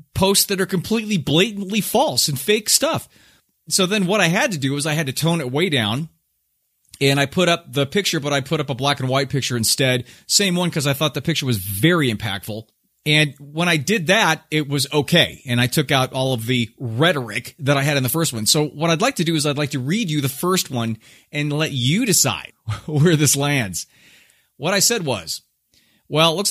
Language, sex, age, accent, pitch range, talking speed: English, male, 30-49, American, 120-165 Hz, 230 wpm